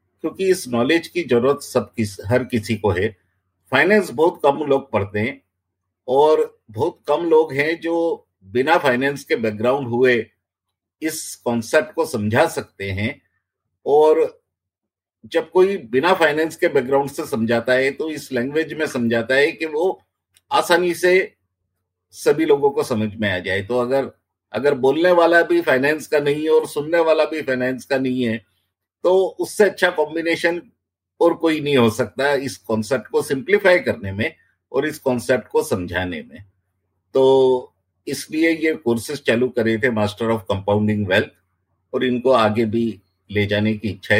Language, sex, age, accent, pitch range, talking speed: Hindi, male, 50-69, native, 105-165 Hz, 165 wpm